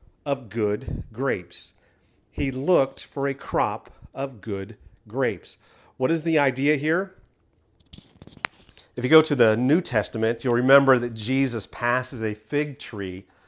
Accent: American